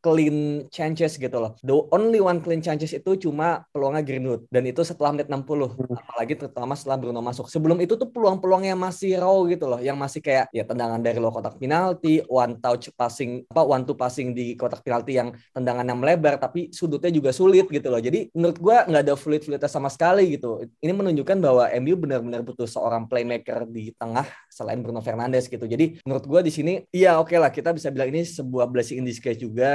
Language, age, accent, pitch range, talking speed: Indonesian, 20-39, native, 120-160 Hz, 205 wpm